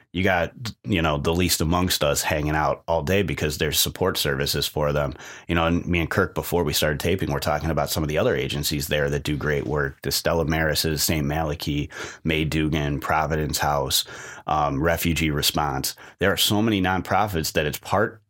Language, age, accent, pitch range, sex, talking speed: English, 30-49, American, 75-100 Hz, male, 200 wpm